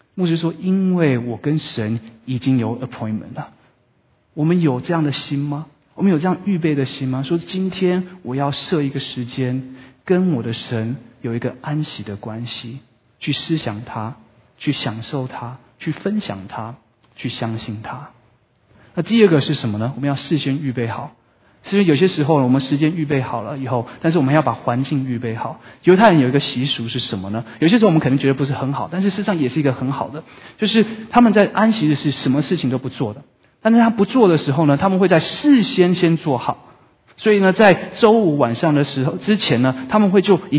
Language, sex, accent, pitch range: Chinese, male, native, 125-180 Hz